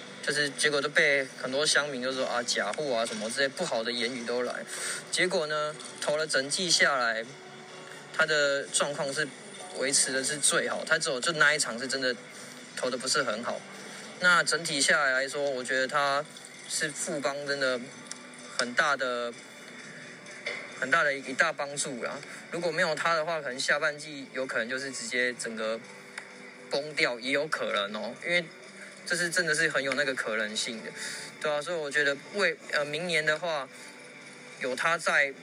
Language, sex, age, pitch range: Chinese, male, 20-39, 130-160 Hz